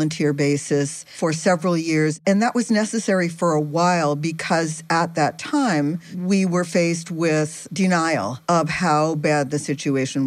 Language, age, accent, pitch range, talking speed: English, 50-69, American, 155-185 Hz, 150 wpm